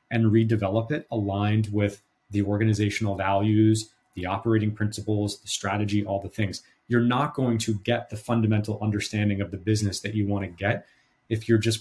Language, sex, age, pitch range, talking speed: English, male, 30-49, 105-120 Hz, 180 wpm